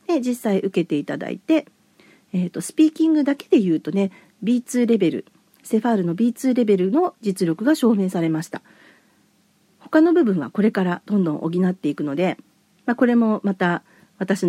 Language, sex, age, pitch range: Japanese, female, 40-59, 170-240 Hz